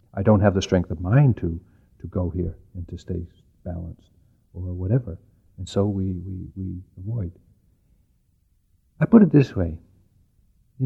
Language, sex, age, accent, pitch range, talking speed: English, male, 60-79, American, 90-115 Hz, 155 wpm